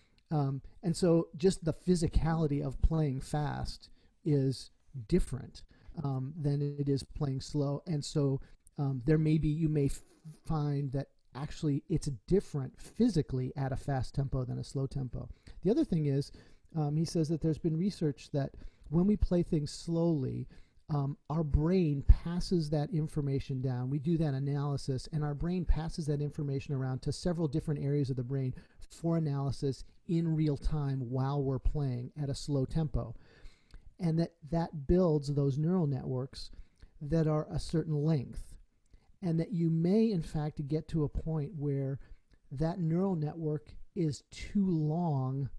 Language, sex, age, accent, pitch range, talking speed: English, male, 40-59, American, 135-160 Hz, 160 wpm